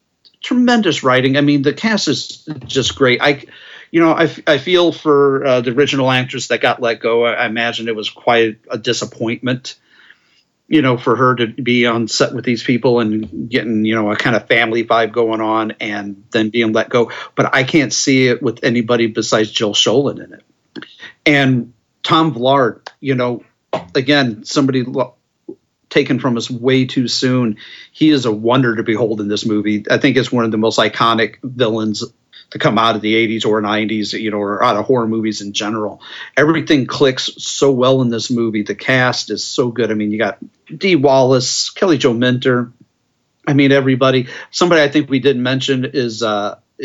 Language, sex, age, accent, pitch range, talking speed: English, male, 40-59, American, 110-135 Hz, 195 wpm